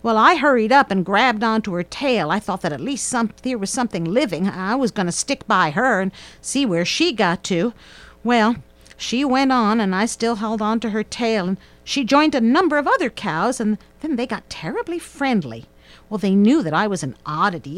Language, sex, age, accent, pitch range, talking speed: English, female, 50-69, American, 185-245 Hz, 225 wpm